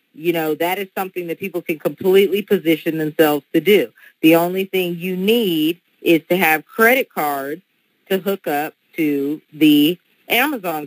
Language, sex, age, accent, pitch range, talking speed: English, female, 40-59, American, 150-180 Hz, 160 wpm